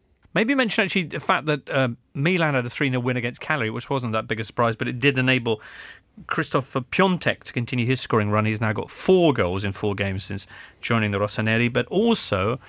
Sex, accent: male, British